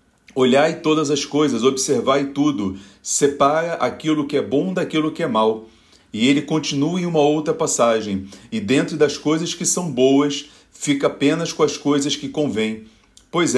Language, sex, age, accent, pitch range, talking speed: Portuguese, male, 40-59, Brazilian, 135-160 Hz, 165 wpm